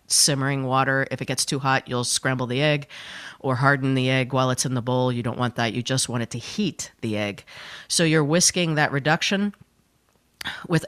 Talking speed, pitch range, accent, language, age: 210 wpm, 130-160 Hz, American, English, 40-59